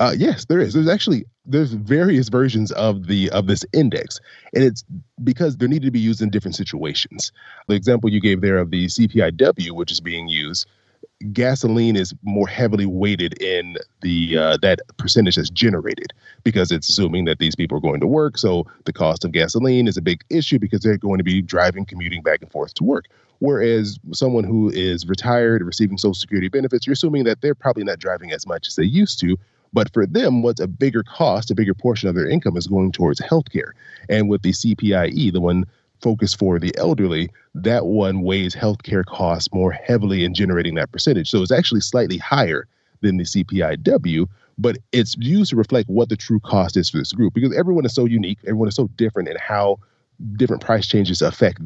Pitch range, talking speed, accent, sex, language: 95-120 Hz, 205 wpm, American, male, English